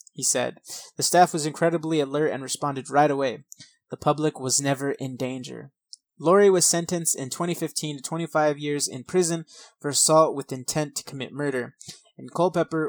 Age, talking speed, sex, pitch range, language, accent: 20-39, 170 wpm, male, 130-160 Hz, English, American